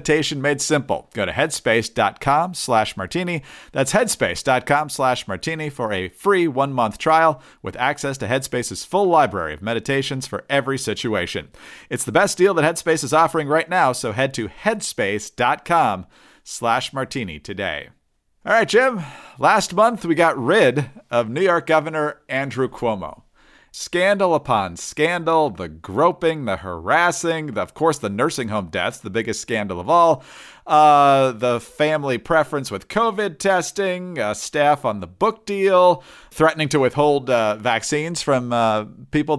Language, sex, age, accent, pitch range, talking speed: English, male, 40-59, American, 120-165 Hz, 140 wpm